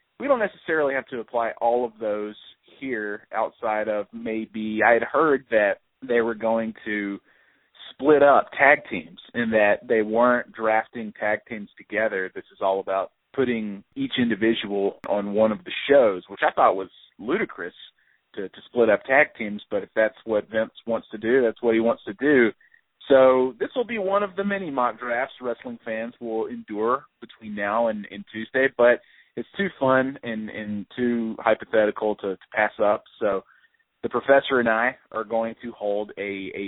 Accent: American